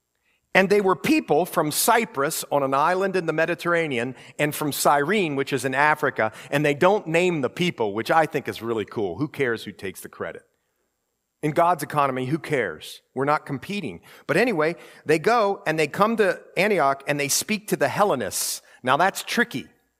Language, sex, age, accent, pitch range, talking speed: English, male, 50-69, American, 120-185 Hz, 190 wpm